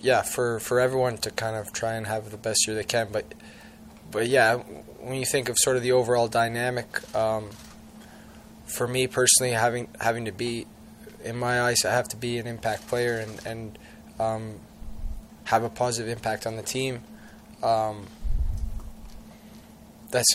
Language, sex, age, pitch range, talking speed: English, male, 20-39, 110-125 Hz, 170 wpm